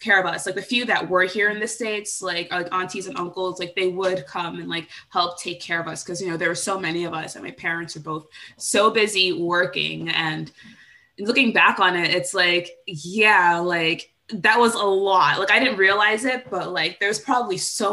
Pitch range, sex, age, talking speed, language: 175-250 Hz, female, 20-39, 230 wpm, English